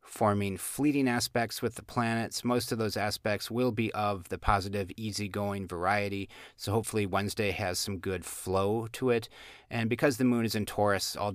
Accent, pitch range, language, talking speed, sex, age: American, 100-120 Hz, English, 180 wpm, male, 30-49